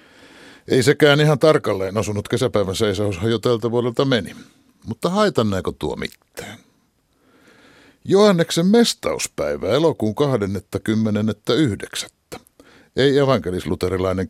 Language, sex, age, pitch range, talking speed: Finnish, male, 60-79, 105-145 Hz, 90 wpm